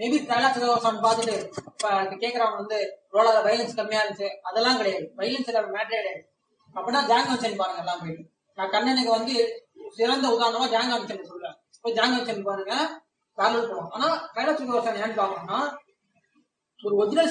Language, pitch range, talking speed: Tamil, 205-260 Hz, 95 wpm